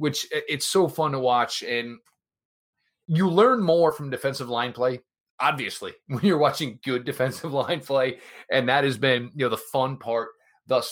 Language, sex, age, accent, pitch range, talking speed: English, male, 30-49, American, 110-145 Hz, 175 wpm